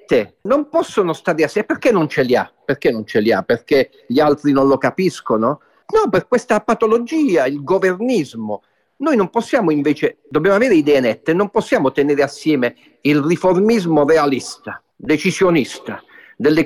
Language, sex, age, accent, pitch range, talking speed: Italian, male, 50-69, native, 155-200 Hz, 155 wpm